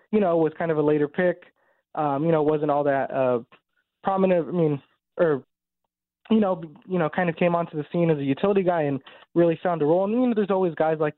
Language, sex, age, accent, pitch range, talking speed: English, male, 20-39, American, 140-175 Hz, 240 wpm